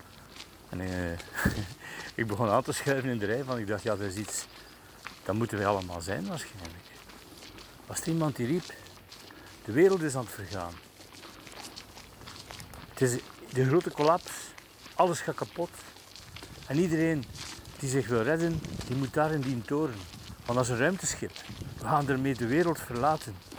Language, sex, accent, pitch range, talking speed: Dutch, male, Dutch, 95-135 Hz, 165 wpm